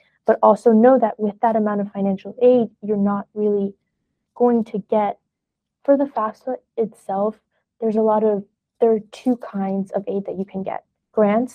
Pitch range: 200-230 Hz